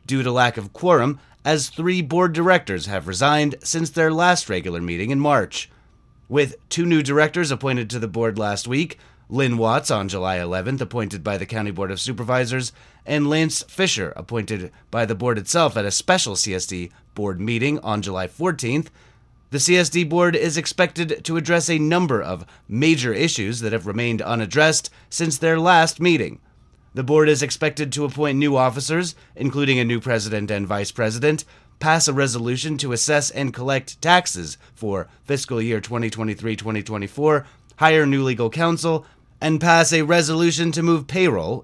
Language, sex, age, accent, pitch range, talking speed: English, male, 30-49, American, 115-155 Hz, 165 wpm